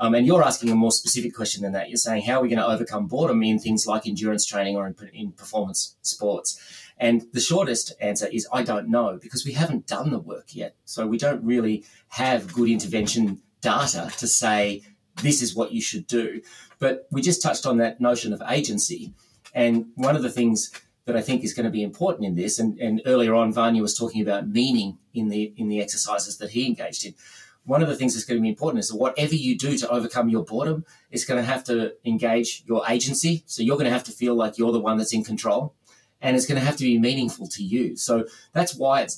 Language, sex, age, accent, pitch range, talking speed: English, male, 30-49, Australian, 110-130 Hz, 235 wpm